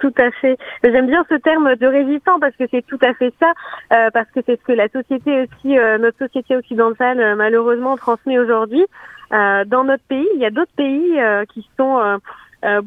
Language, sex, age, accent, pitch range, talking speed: French, female, 20-39, French, 220-270 Hz, 210 wpm